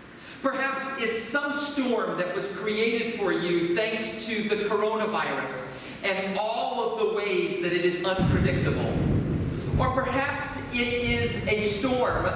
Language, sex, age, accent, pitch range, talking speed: English, male, 40-59, American, 185-240 Hz, 135 wpm